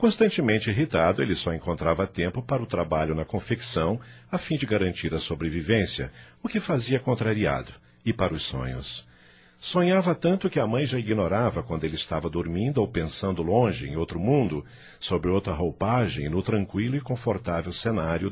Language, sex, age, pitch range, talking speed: Portuguese, male, 50-69, 75-125 Hz, 165 wpm